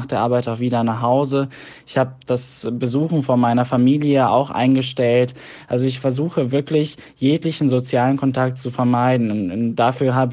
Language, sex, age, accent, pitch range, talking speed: German, male, 10-29, German, 120-135 Hz, 155 wpm